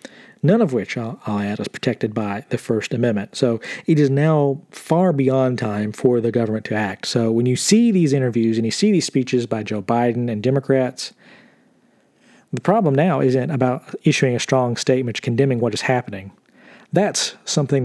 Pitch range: 115-140 Hz